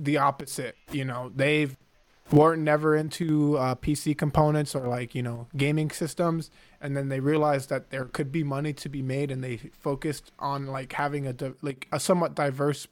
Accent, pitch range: American, 135-160 Hz